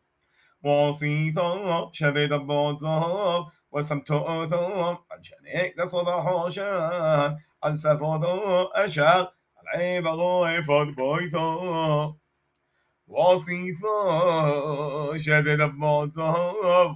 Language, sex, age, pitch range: Hebrew, male, 30-49, 150-180 Hz